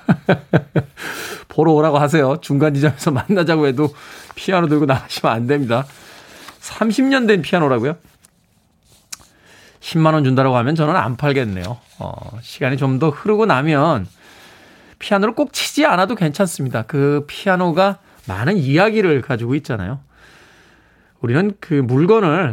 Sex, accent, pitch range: male, native, 130-180 Hz